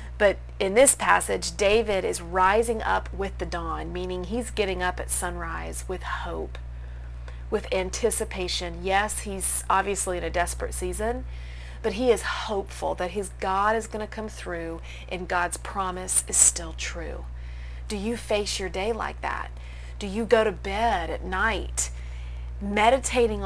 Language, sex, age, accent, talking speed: English, female, 40-59, American, 155 wpm